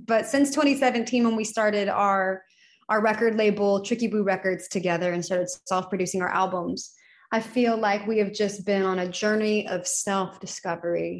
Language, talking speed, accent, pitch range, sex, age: English, 165 wpm, American, 190-220 Hz, female, 20-39